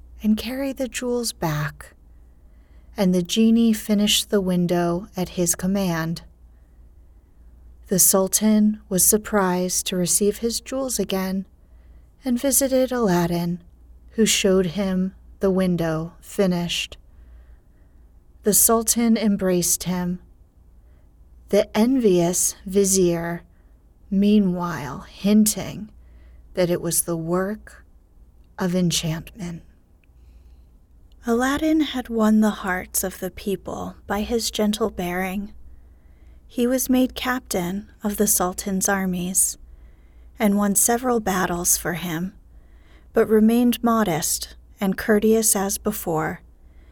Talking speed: 105 wpm